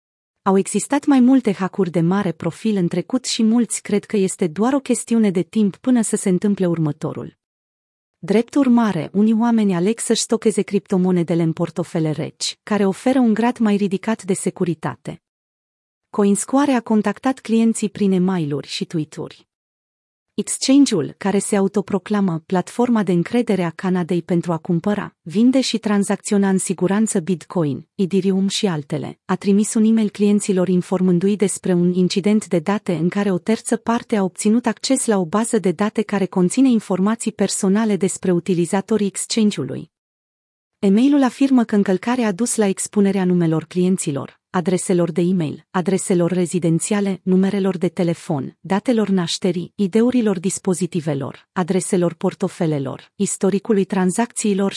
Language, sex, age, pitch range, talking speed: Romanian, female, 30-49, 180-215 Hz, 140 wpm